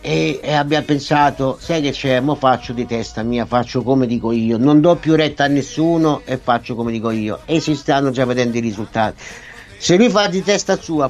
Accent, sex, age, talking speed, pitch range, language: native, male, 50-69, 210 wpm, 125-160 Hz, Italian